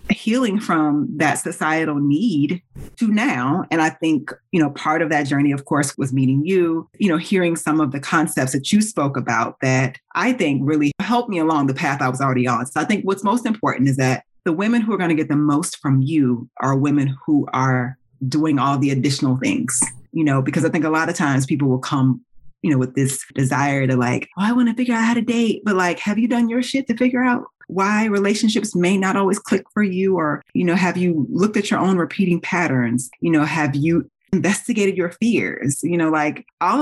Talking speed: 230 wpm